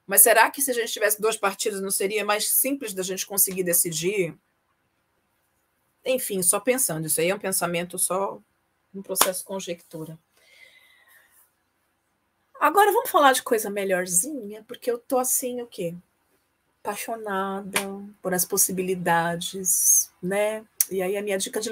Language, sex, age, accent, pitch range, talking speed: Portuguese, female, 40-59, Brazilian, 175-220 Hz, 145 wpm